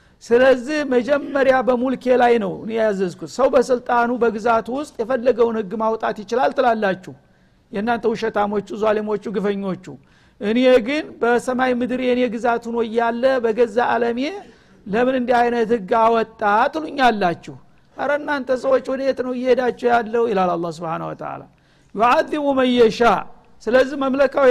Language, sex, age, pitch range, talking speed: Amharic, male, 50-69, 225-255 Hz, 110 wpm